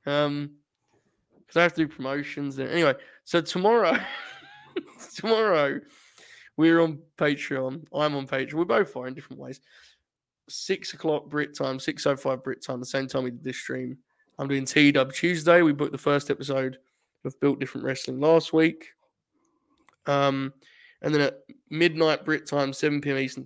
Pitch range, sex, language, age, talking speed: 135-160 Hz, male, English, 20-39, 165 wpm